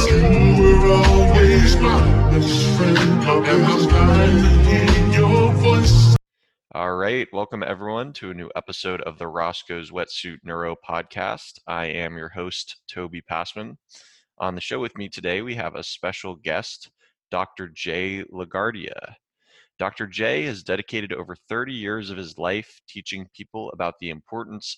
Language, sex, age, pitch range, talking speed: English, male, 20-39, 85-105 Hz, 120 wpm